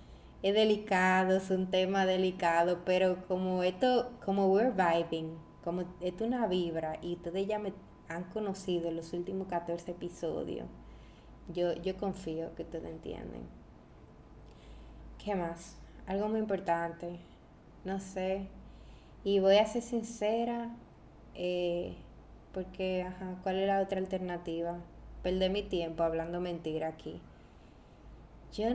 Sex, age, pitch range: female, 20-39, 170-200 Hz